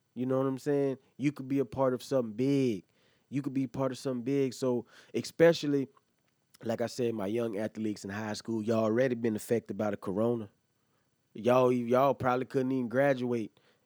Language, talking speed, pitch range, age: English, 190 wpm, 120-140 Hz, 20-39